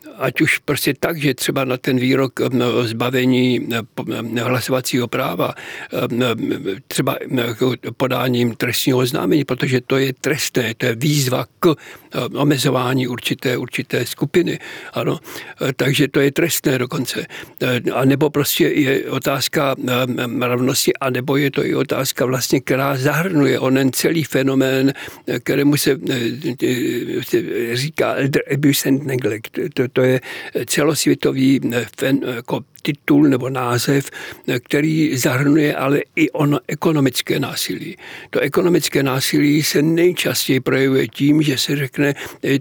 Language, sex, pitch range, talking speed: Czech, male, 125-150 Hz, 115 wpm